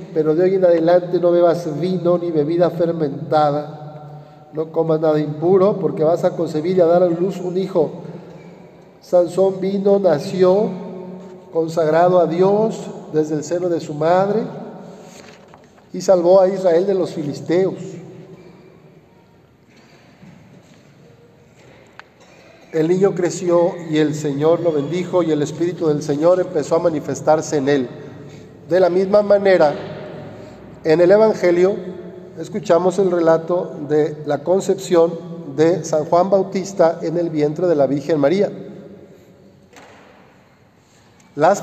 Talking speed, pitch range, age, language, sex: 125 wpm, 160-185 Hz, 50-69, Spanish, male